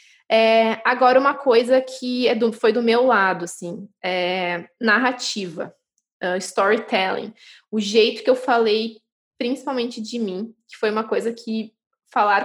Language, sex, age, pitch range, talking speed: Portuguese, female, 20-39, 210-245 Hz, 120 wpm